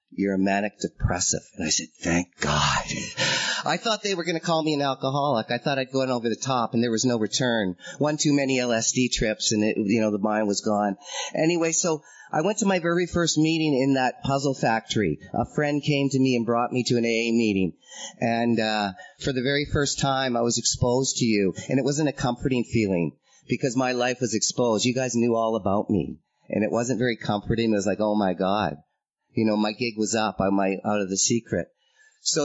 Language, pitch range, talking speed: English, 110-135 Hz, 225 wpm